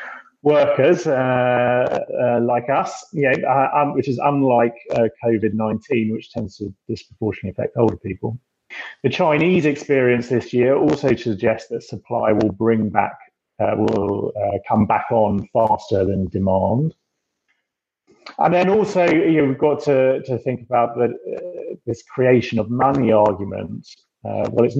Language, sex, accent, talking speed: English, male, British, 150 wpm